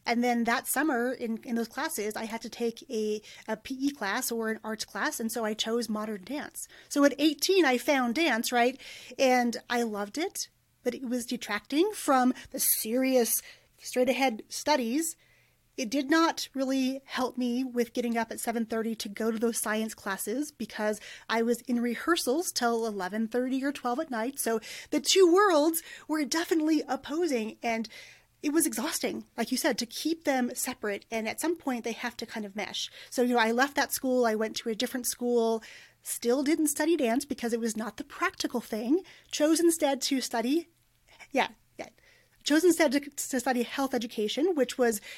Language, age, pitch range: English, 30-49, 230-290 Hz